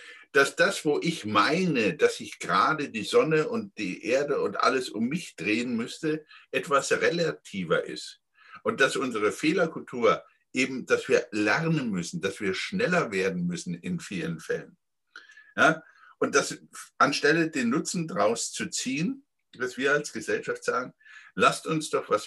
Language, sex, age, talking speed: German, male, 60-79, 155 wpm